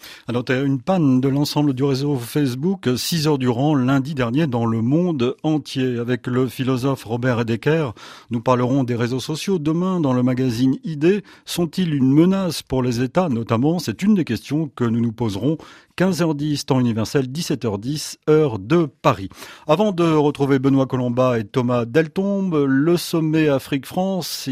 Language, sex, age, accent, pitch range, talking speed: French, male, 40-59, French, 125-165 Hz, 160 wpm